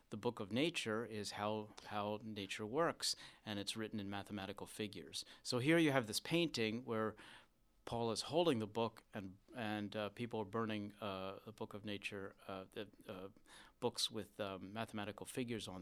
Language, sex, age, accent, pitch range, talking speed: English, male, 40-59, American, 100-120 Hz, 180 wpm